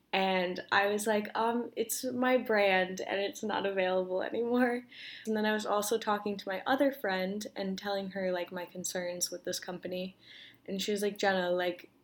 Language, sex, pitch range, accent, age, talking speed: English, female, 185-225 Hz, American, 10-29, 190 wpm